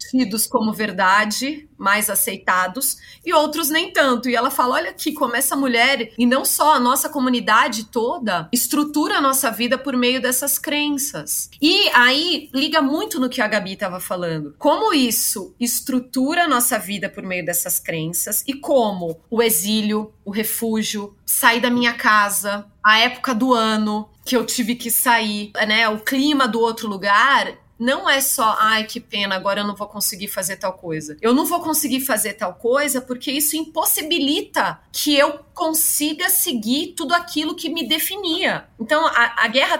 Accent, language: Brazilian, Portuguese